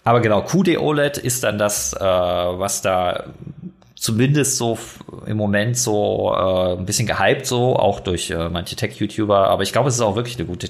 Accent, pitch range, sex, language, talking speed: German, 95-120 Hz, male, German, 190 wpm